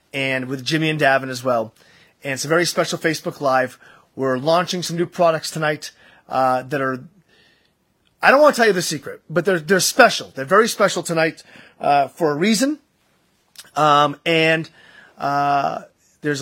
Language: English